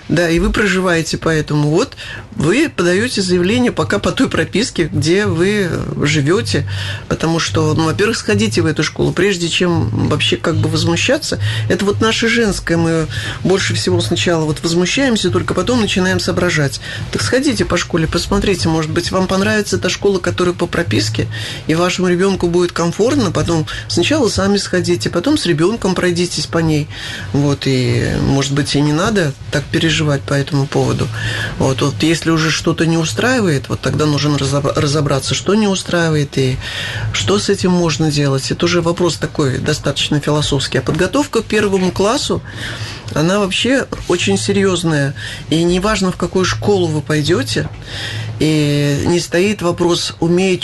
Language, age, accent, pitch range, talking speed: Russian, 20-39, native, 140-180 Hz, 155 wpm